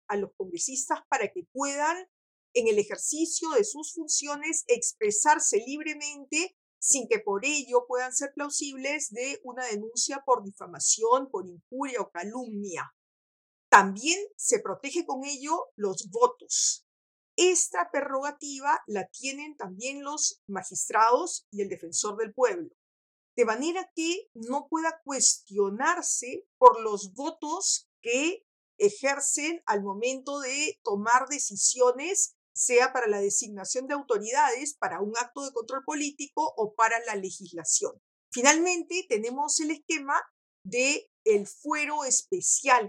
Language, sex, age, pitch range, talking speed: Spanish, female, 50-69, 245-335 Hz, 125 wpm